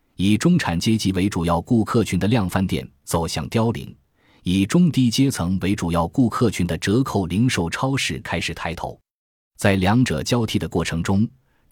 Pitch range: 90-120 Hz